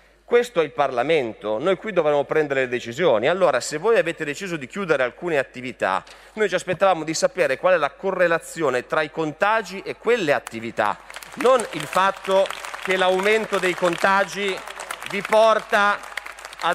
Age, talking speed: 30-49, 160 wpm